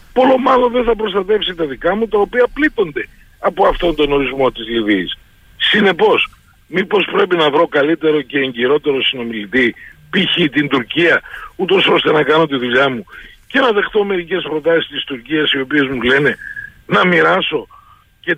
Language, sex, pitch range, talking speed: Greek, male, 145-235 Hz, 160 wpm